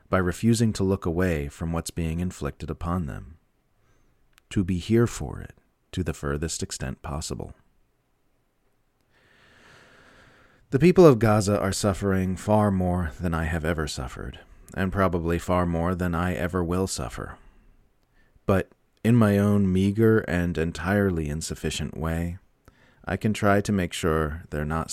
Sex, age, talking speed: male, 40-59, 145 wpm